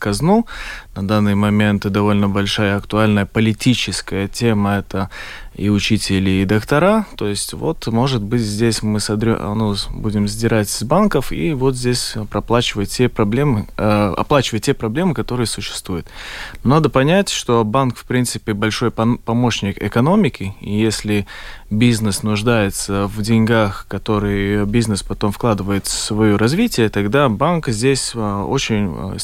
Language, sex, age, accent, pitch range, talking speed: Russian, male, 20-39, native, 100-125 Hz, 130 wpm